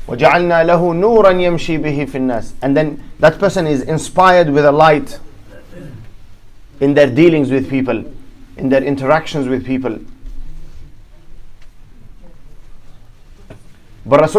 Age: 30-49